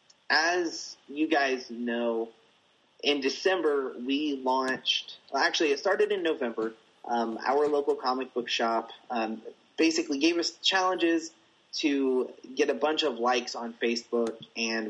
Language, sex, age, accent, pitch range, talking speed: English, male, 30-49, American, 115-155 Hz, 135 wpm